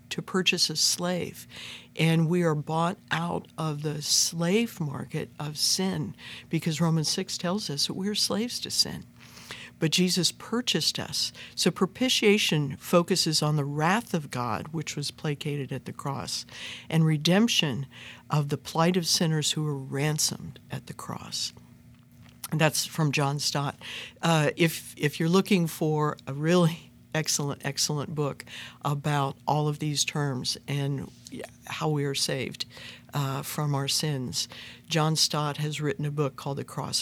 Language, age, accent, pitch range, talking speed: English, 60-79, American, 145-175 Hz, 155 wpm